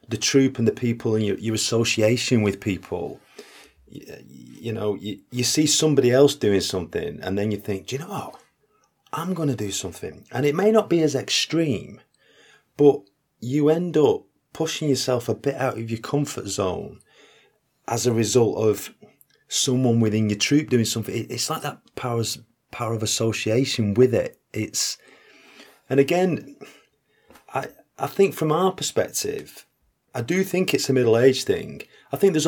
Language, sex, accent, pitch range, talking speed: English, male, British, 100-140 Hz, 170 wpm